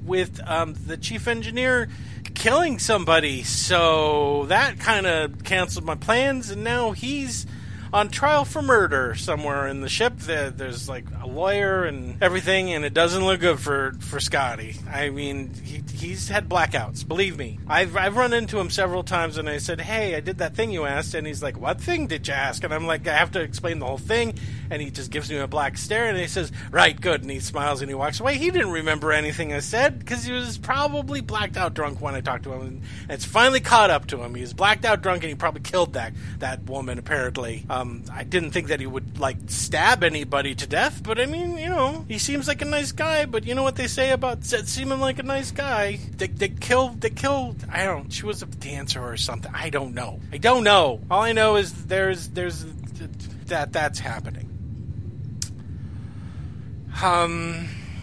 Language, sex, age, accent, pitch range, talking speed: English, male, 40-59, American, 115-185 Hz, 215 wpm